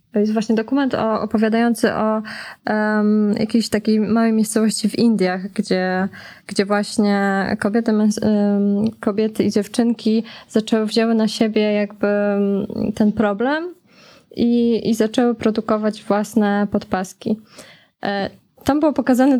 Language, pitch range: Polish, 205-230 Hz